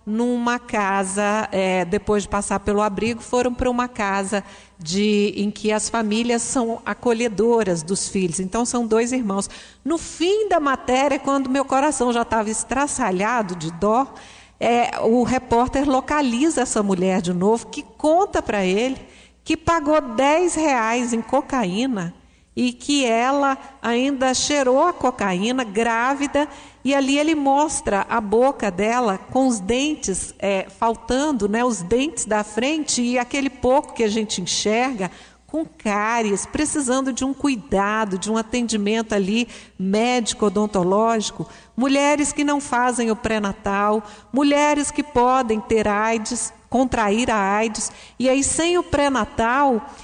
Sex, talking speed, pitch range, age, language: female, 135 wpm, 210-270 Hz, 50-69, Portuguese